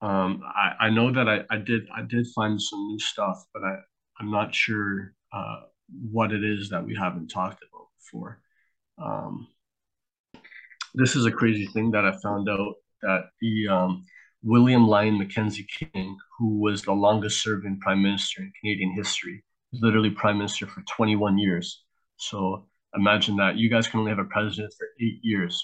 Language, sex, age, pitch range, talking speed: English, male, 30-49, 100-115 Hz, 180 wpm